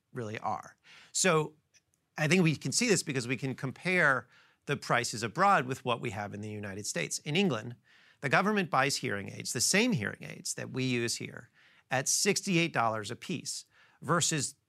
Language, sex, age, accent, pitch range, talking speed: English, male, 40-59, American, 120-165 Hz, 180 wpm